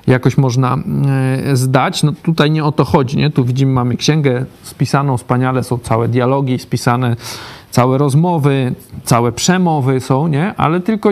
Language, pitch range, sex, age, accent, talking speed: Polish, 125-150 Hz, male, 40-59, native, 150 wpm